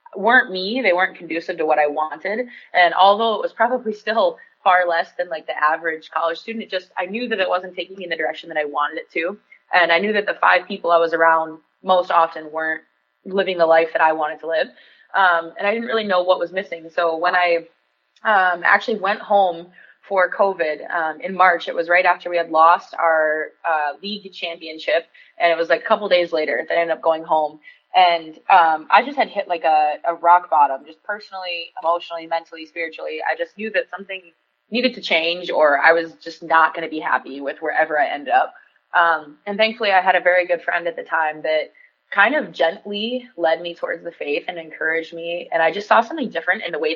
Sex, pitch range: female, 160-195 Hz